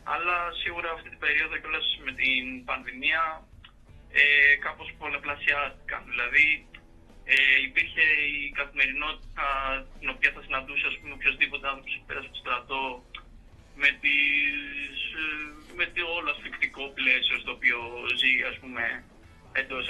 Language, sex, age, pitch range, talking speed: Greek, male, 20-39, 130-160 Hz, 120 wpm